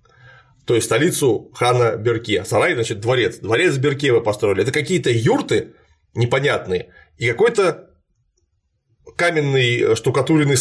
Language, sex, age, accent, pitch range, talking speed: Russian, male, 30-49, native, 135-185 Hz, 115 wpm